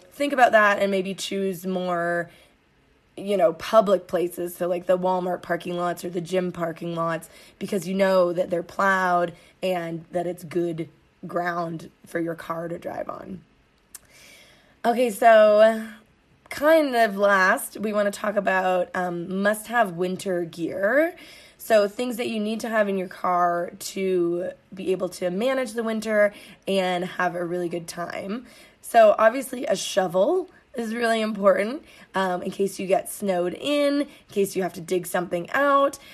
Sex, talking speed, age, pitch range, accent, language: female, 160 wpm, 20-39, 180-215 Hz, American, English